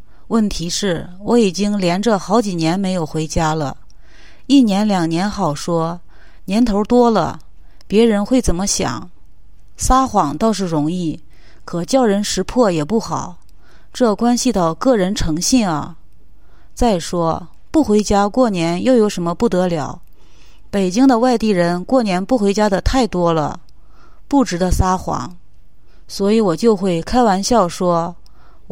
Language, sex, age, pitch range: English, female, 30-49, 165-230 Hz